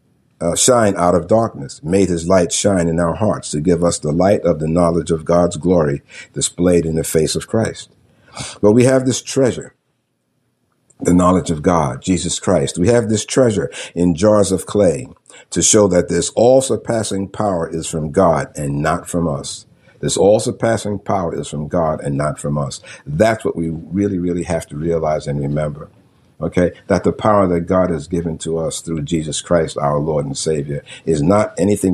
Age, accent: 50-69, American